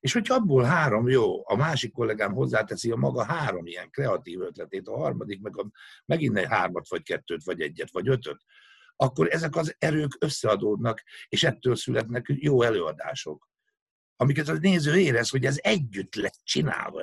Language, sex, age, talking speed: Hungarian, male, 60-79, 165 wpm